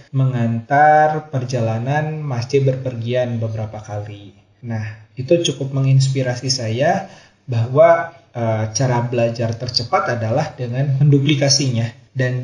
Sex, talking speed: male, 95 wpm